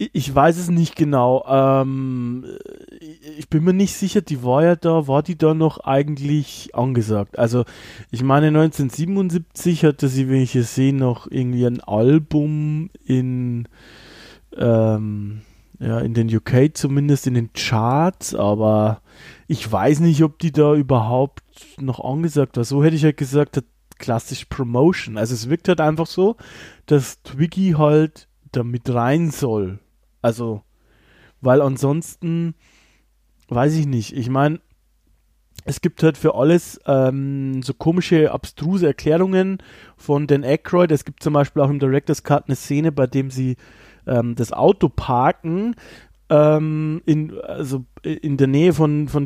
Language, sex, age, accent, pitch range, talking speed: German, male, 20-39, German, 125-155 Hz, 150 wpm